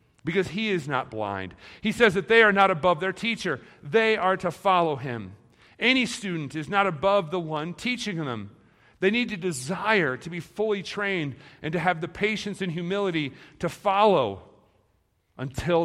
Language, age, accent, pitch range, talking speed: English, 40-59, American, 135-205 Hz, 175 wpm